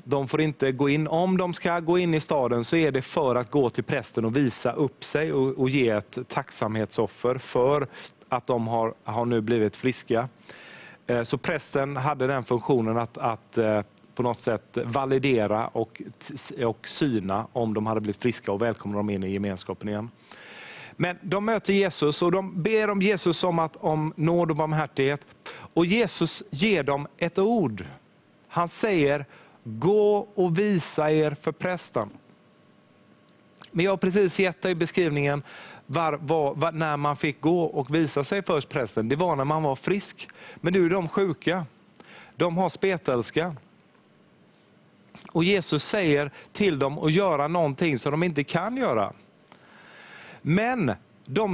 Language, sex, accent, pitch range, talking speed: English, male, Swedish, 125-180 Hz, 160 wpm